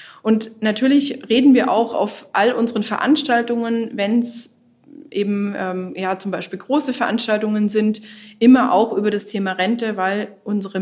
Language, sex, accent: German, female, German